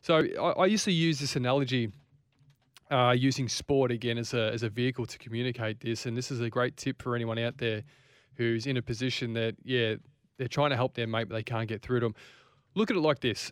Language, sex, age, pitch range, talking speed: English, male, 20-39, 120-140 Hz, 240 wpm